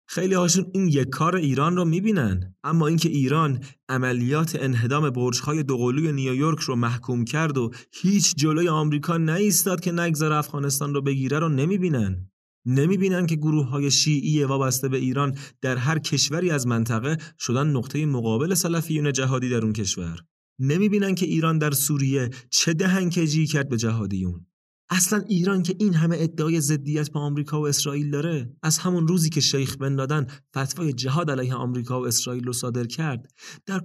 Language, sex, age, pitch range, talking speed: Persian, male, 30-49, 115-155 Hz, 160 wpm